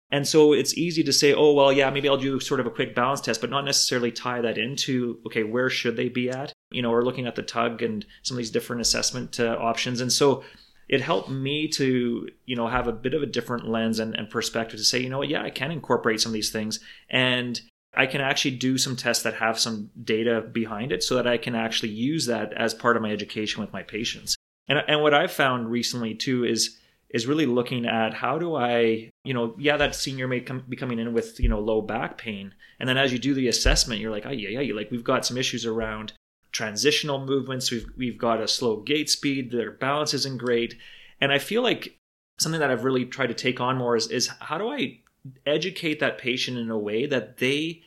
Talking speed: 240 wpm